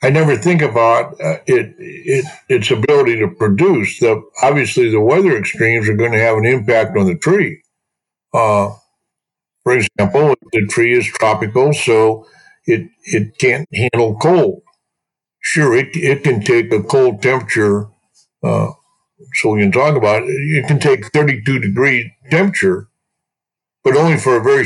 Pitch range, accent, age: 115-170 Hz, American, 60-79